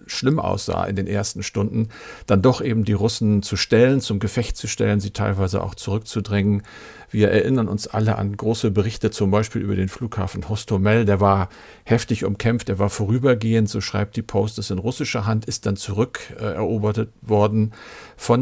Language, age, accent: German, 50-69, German